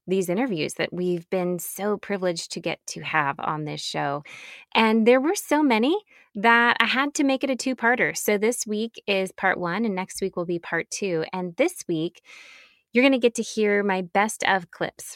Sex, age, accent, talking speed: female, 20-39, American, 210 wpm